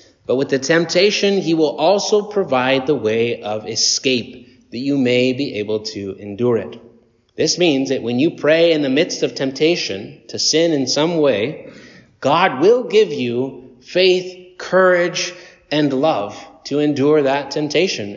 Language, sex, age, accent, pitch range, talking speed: English, male, 30-49, American, 125-170 Hz, 160 wpm